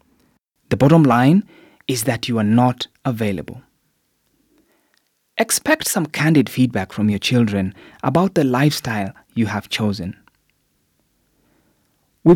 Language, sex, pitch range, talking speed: English, male, 115-180 Hz, 110 wpm